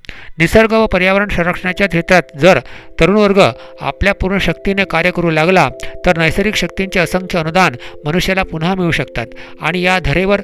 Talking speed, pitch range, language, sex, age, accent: 145 wpm, 155-190 Hz, Hindi, male, 50-69, native